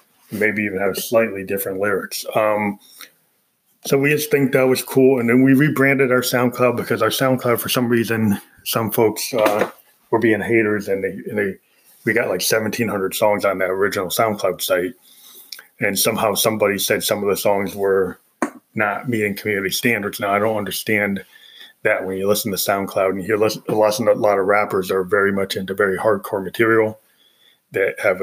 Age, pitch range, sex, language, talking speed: 20-39, 105-125 Hz, male, English, 180 wpm